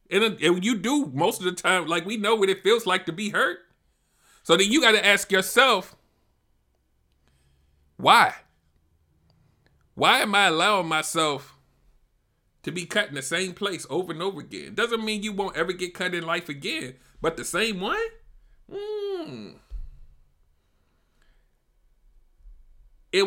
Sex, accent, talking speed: male, American, 145 wpm